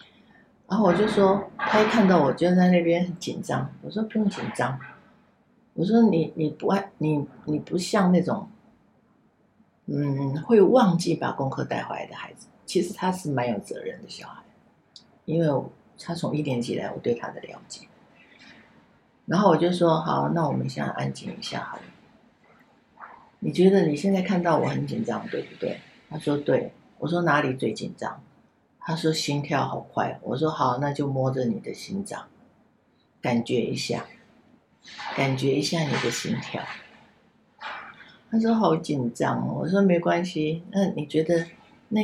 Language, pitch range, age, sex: Chinese, 150-215 Hz, 50-69, female